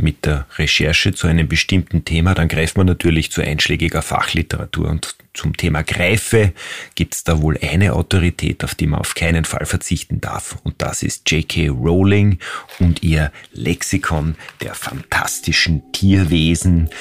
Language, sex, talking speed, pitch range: German, male, 150 wpm, 85-110 Hz